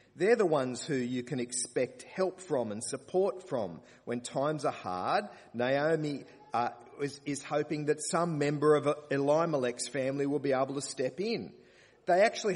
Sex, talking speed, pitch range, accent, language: male, 170 wpm, 120-180 Hz, Australian, English